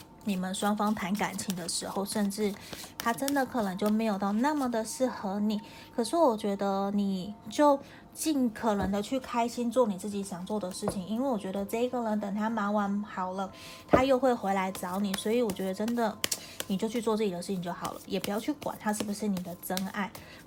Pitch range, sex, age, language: 195-235 Hz, female, 20-39, Chinese